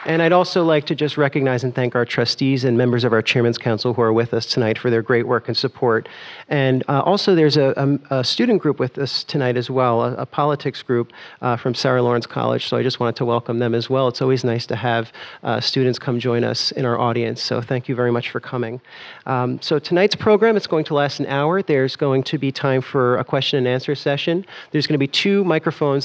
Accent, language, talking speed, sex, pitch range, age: American, English, 245 wpm, male, 120-145 Hz, 40-59